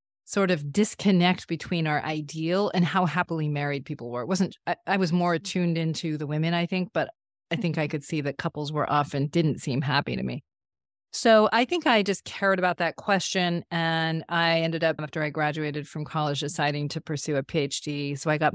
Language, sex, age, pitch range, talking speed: English, female, 30-49, 150-175 Hz, 210 wpm